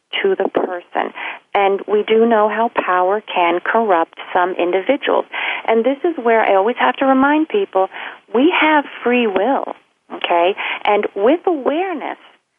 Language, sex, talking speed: English, female, 150 wpm